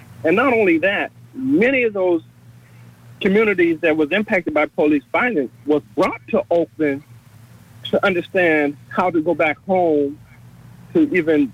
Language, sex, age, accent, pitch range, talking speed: English, male, 50-69, American, 130-170 Hz, 140 wpm